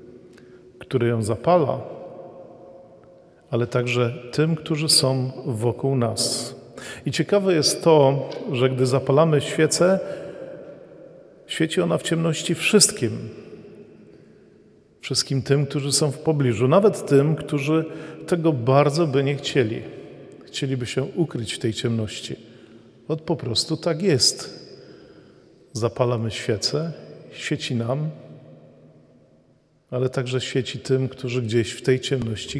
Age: 40-59